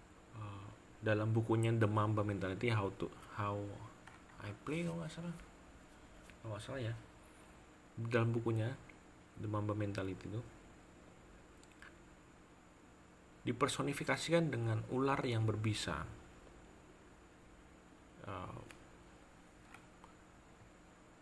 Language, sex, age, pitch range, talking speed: Indonesian, male, 30-49, 100-125 Hz, 80 wpm